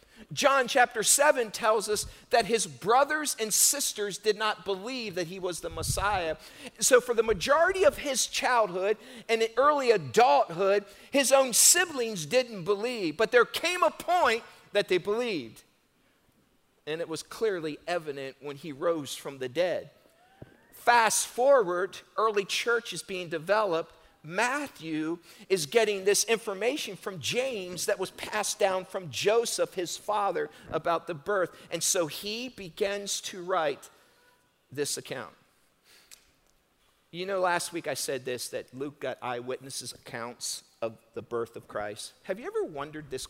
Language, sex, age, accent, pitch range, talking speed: English, male, 50-69, American, 165-245 Hz, 150 wpm